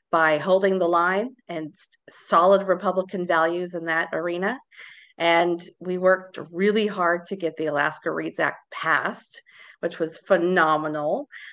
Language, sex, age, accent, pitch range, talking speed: English, female, 40-59, American, 165-200 Hz, 135 wpm